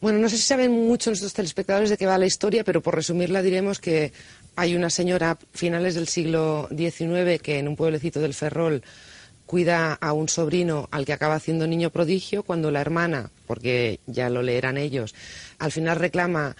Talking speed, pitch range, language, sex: 190 wpm, 145-180 Hz, Spanish, female